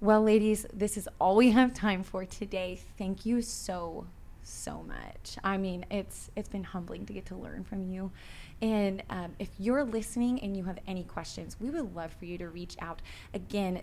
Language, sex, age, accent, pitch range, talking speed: English, female, 20-39, American, 185-220 Hz, 200 wpm